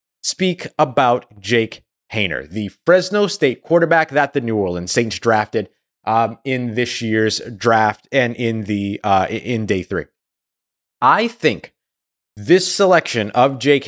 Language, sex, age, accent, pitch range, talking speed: English, male, 30-49, American, 115-155 Hz, 140 wpm